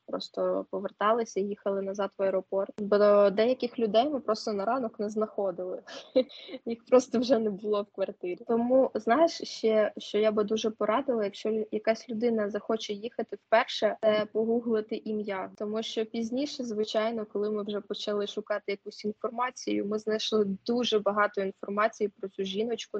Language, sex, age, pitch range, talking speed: Ukrainian, female, 20-39, 200-230 Hz, 150 wpm